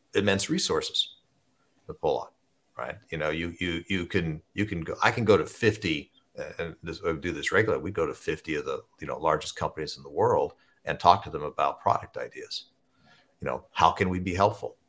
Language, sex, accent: English, male, American